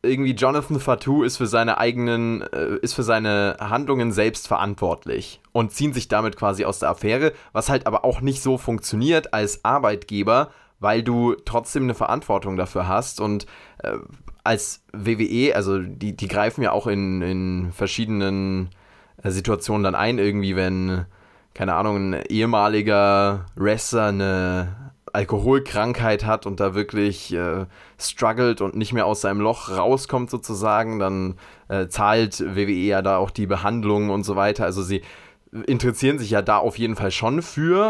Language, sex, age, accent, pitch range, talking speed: German, male, 20-39, German, 100-115 Hz, 155 wpm